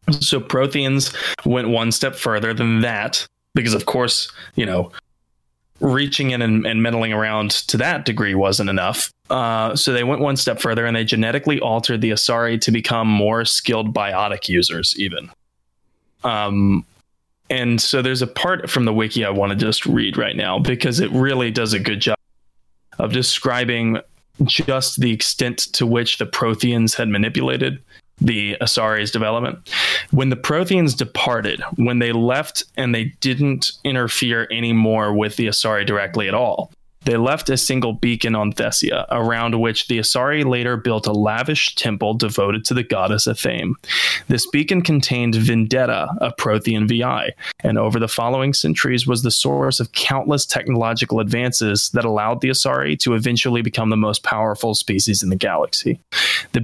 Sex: male